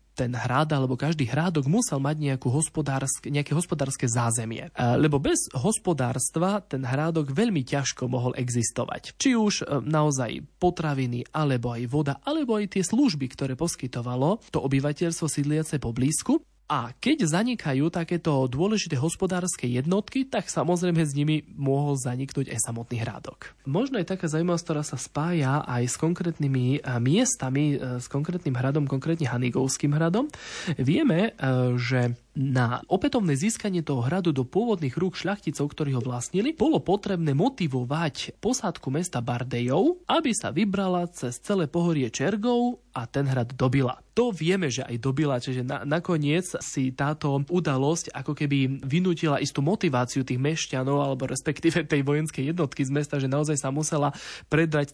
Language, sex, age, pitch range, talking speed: Slovak, male, 20-39, 130-175 Hz, 145 wpm